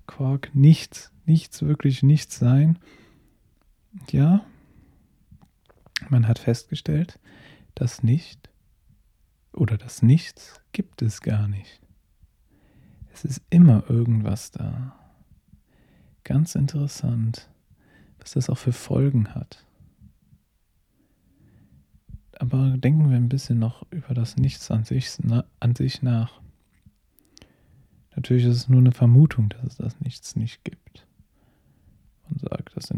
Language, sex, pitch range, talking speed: German, male, 110-135 Hz, 115 wpm